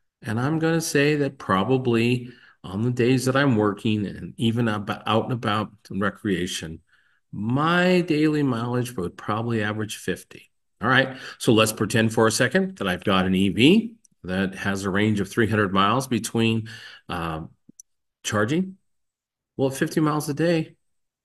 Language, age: English, 50-69